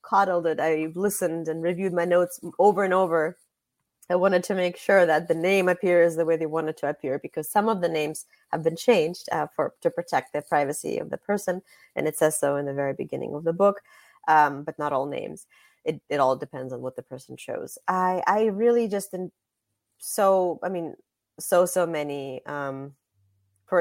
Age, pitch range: 30-49, 150-180 Hz